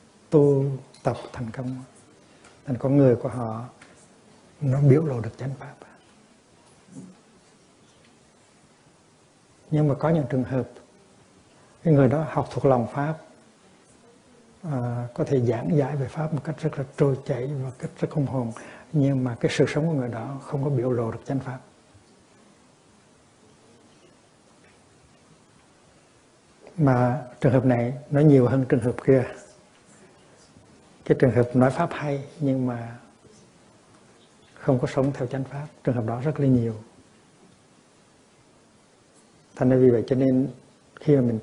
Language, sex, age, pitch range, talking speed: Vietnamese, male, 60-79, 125-145 Hz, 145 wpm